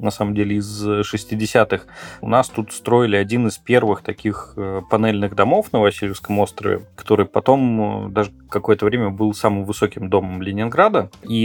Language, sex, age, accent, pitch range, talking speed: Russian, male, 20-39, native, 100-115 Hz, 150 wpm